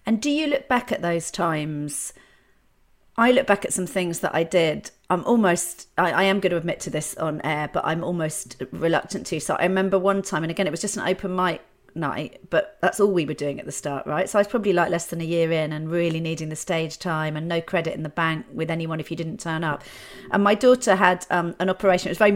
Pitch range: 165-210 Hz